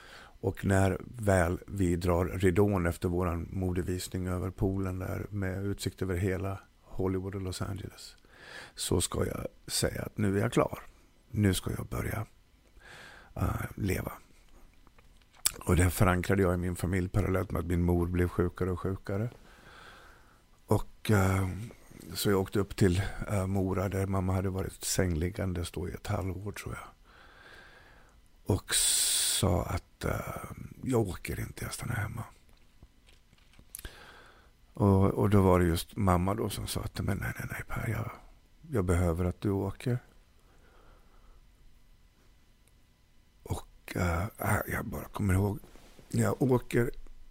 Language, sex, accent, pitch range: Swedish, male, native, 90-100 Hz